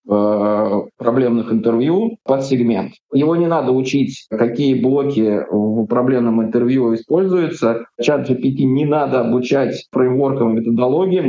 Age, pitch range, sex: 20-39, 115-135 Hz, male